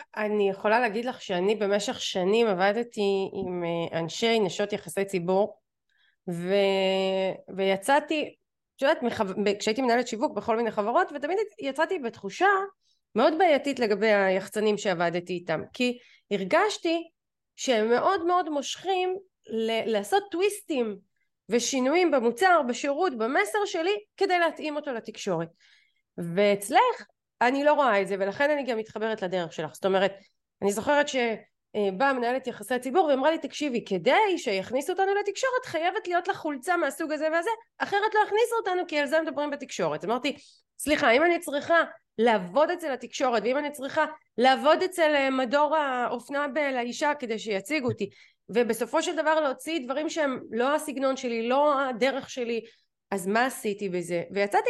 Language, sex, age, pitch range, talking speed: Hebrew, female, 30-49, 210-320 Hz, 135 wpm